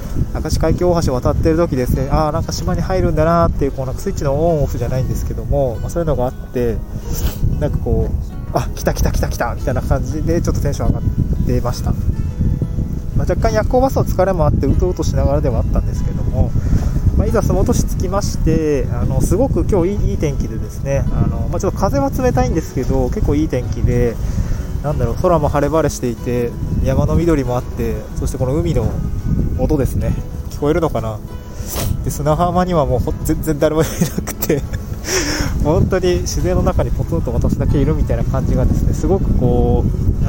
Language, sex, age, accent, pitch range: Japanese, male, 20-39, native, 110-155 Hz